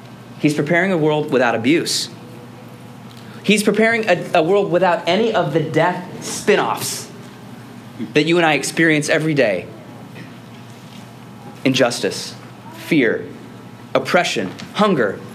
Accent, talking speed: American, 110 wpm